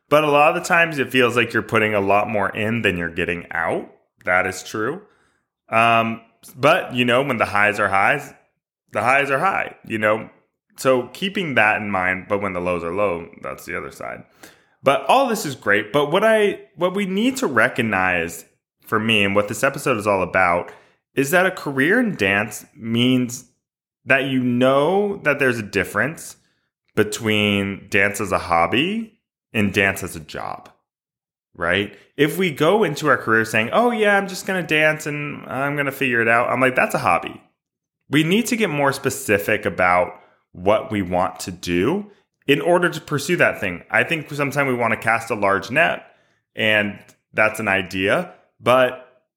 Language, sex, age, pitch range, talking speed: English, male, 20-39, 100-145 Hz, 190 wpm